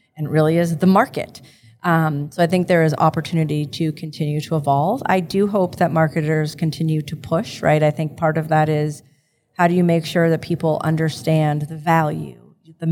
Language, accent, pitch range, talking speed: English, American, 150-175 Hz, 195 wpm